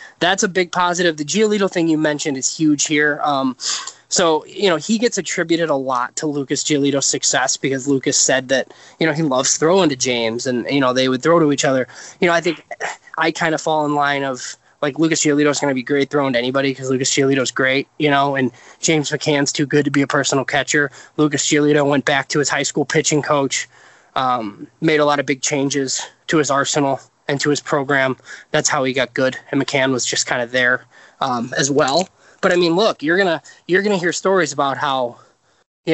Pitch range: 135-165 Hz